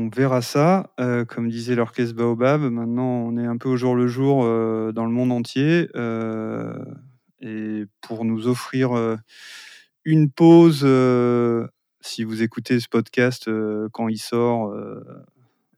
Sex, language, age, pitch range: male, French, 30-49, 115-130 Hz